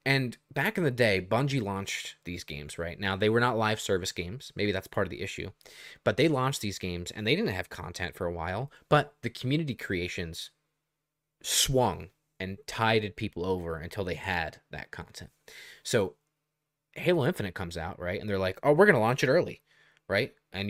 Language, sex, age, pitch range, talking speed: English, male, 20-39, 100-150 Hz, 195 wpm